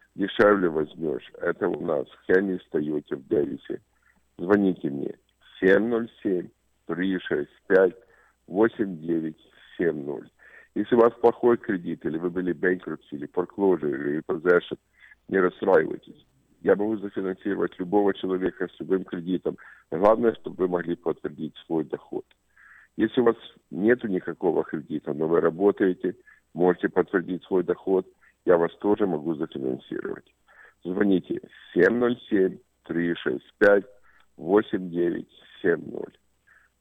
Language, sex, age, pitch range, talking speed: Russian, male, 50-69, 90-105 Hz, 100 wpm